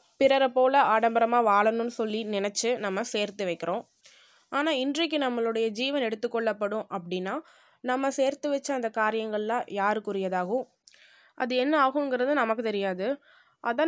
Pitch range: 225-290 Hz